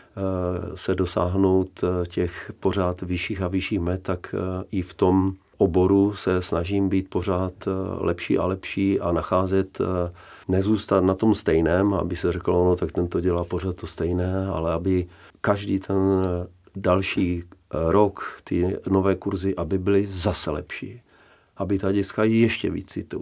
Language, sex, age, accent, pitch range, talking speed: Czech, male, 40-59, native, 90-100 Hz, 145 wpm